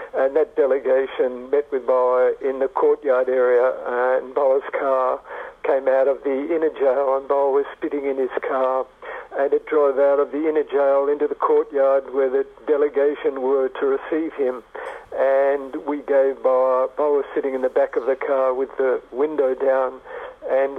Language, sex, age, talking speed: English, male, 60-79, 180 wpm